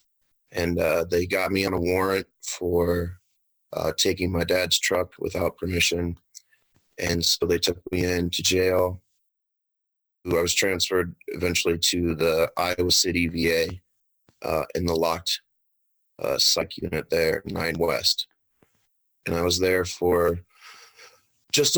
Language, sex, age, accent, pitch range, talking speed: English, male, 30-49, American, 85-110 Hz, 135 wpm